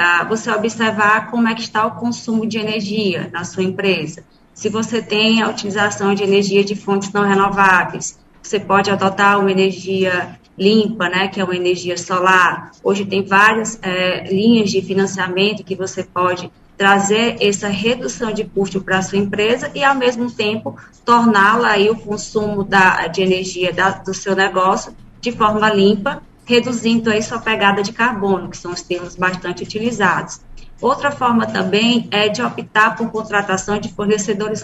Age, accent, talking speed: 20-39, Brazilian, 160 wpm